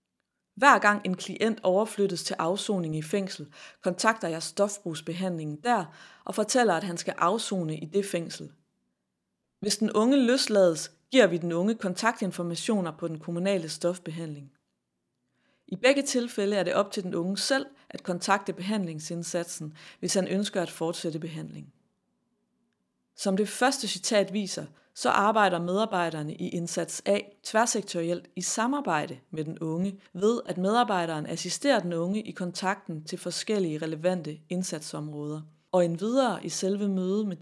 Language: Danish